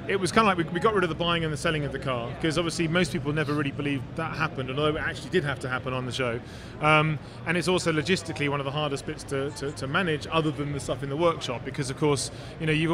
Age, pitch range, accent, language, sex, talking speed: 30-49, 140-165 Hz, British, English, male, 290 wpm